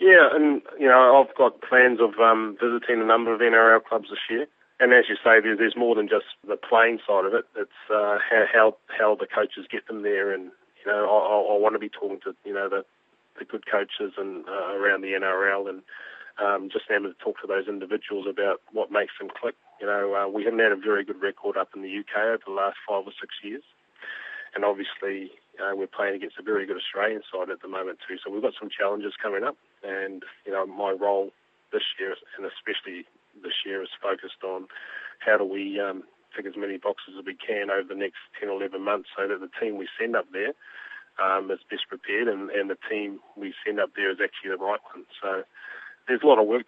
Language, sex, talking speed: English, male, 230 wpm